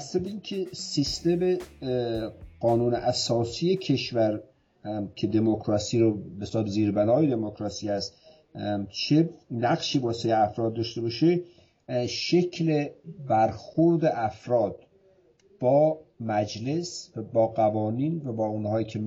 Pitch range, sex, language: 105-140 Hz, male, Persian